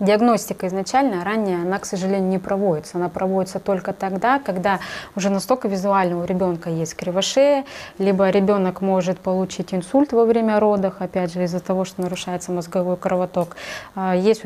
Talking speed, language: 155 wpm, English